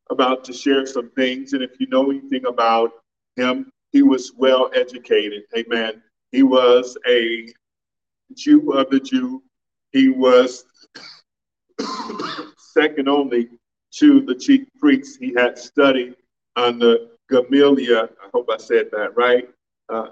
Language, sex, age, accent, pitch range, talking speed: English, male, 50-69, American, 125-160 Hz, 130 wpm